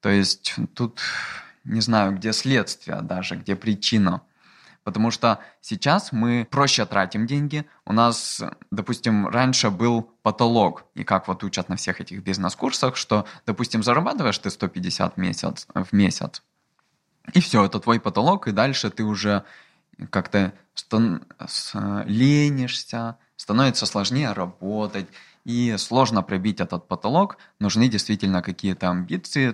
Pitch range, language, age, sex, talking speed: 105-140 Hz, Russian, 20-39, male, 125 wpm